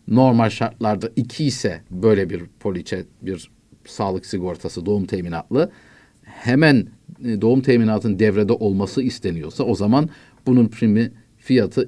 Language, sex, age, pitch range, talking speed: Turkish, male, 50-69, 110-140 Hz, 115 wpm